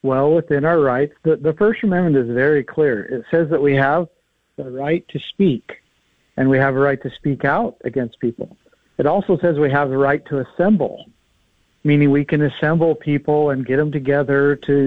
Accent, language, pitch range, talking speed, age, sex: American, English, 140-175 Hz, 195 wpm, 50-69, male